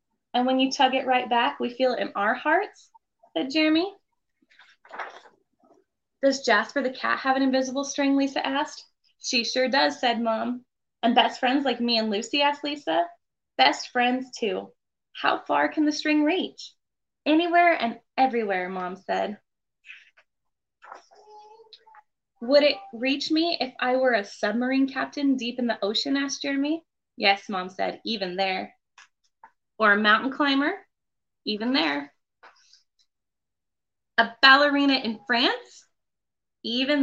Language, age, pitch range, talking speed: English, 20-39, 225-290 Hz, 140 wpm